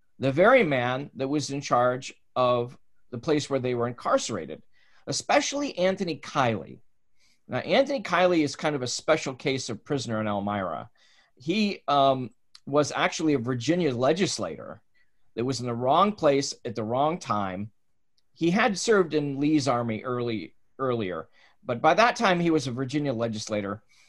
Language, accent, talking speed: English, American, 160 wpm